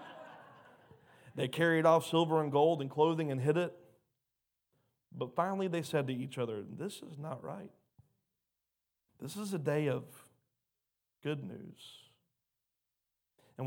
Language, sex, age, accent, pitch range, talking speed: English, male, 30-49, American, 135-185 Hz, 130 wpm